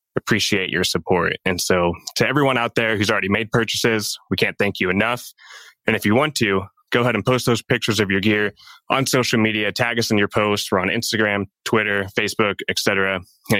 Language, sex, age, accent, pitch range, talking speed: English, male, 20-39, American, 95-115 Hz, 205 wpm